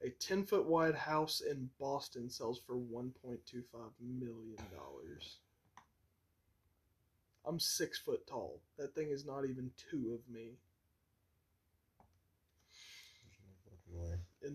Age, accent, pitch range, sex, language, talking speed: 20-39, American, 115-140 Hz, male, English, 90 wpm